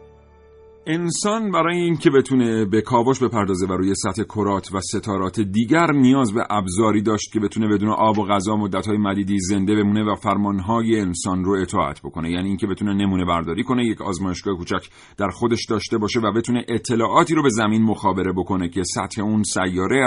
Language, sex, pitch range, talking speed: Persian, male, 95-115 Hz, 175 wpm